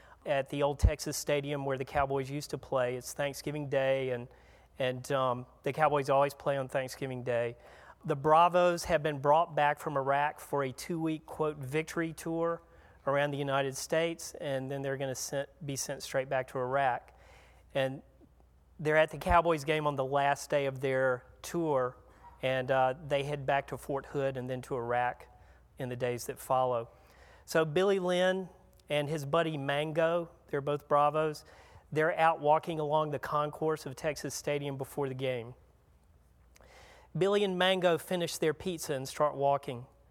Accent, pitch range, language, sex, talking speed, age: American, 135-160 Hz, English, male, 170 wpm, 40-59